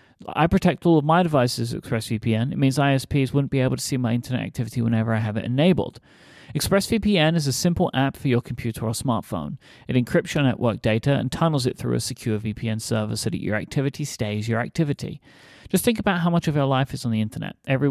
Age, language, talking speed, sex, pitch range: 30-49, English, 225 wpm, male, 110-140 Hz